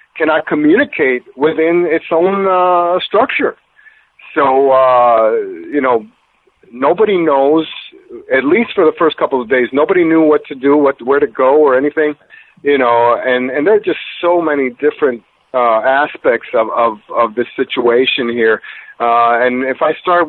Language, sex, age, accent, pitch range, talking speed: English, male, 50-69, American, 130-205 Hz, 160 wpm